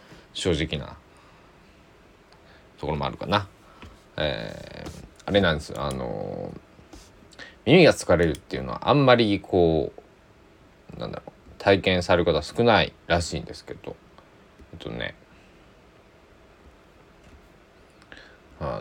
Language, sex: Japanese, male